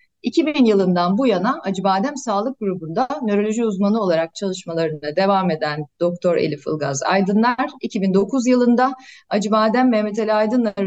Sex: female